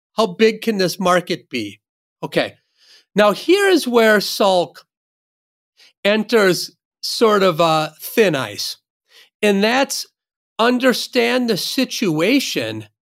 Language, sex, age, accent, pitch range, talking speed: English, male, 40-59, American, 180-235 Hz, 105 wpm